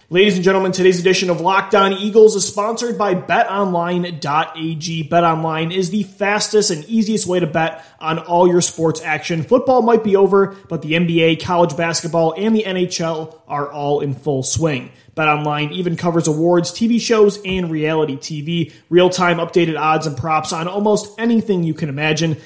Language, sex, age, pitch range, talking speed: English, male, 30-49, 155-190 Hz, 170 wpm